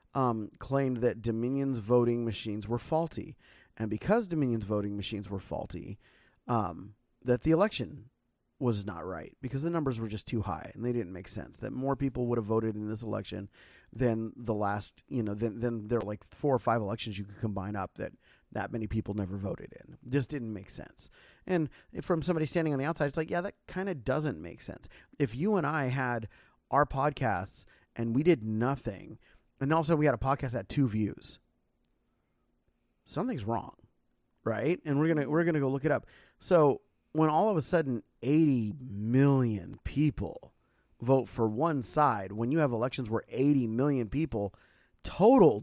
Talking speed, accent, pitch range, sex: 190 wpm, American, 110-155 Hz, male